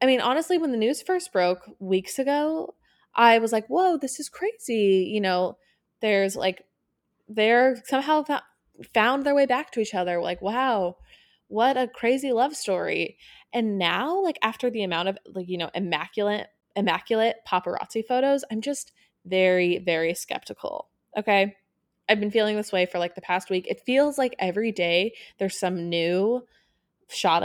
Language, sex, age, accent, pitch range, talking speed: English, female, 20-39, American, 185-250 Hz, 170 wpm